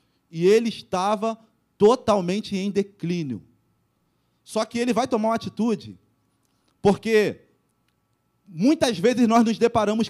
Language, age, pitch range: Portuguese, 30-49, 195-250 Hz